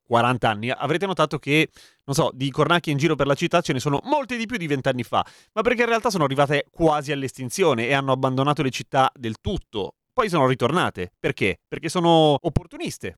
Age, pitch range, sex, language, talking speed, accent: 30-49, 135-195 Hz, male, Italian, 205 wpm, native